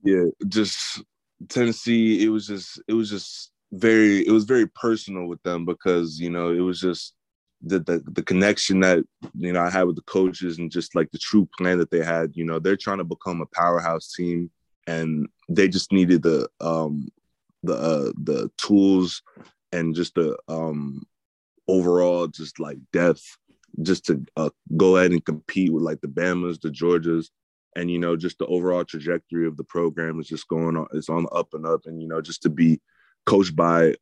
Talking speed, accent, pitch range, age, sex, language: 195 wpm, American, 80-95 Hz, 20-39, male, English